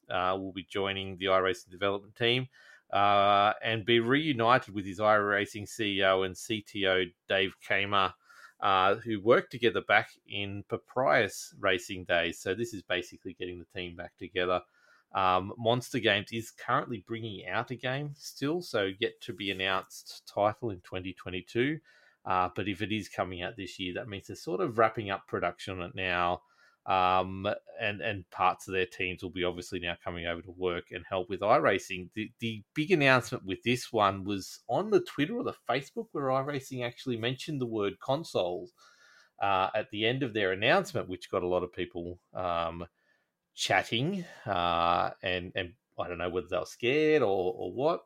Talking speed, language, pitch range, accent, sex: 180 wpm, English, 90-115 Hz, Australian, male